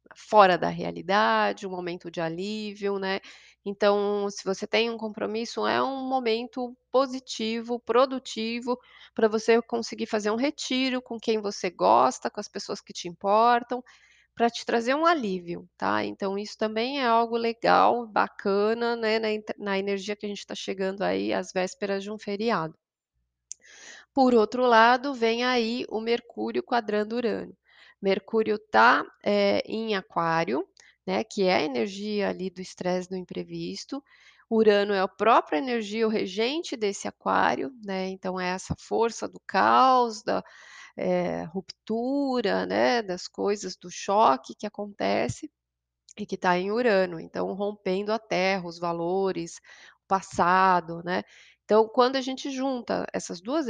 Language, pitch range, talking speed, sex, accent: Portuguese, 190-235 Hz, 145 wpm, female, Brazilian